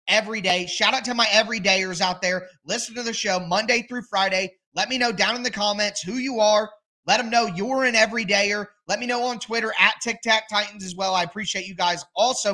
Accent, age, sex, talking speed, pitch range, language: American, 20-39, male, 235 wpm, 175-210 Hz, English